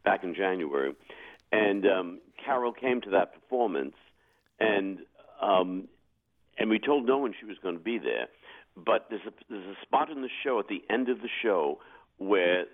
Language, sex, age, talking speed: English, male, 60-79, 175 wpm